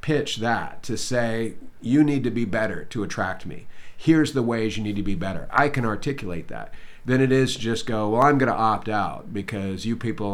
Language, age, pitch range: English, 40-59, 100-115 Hz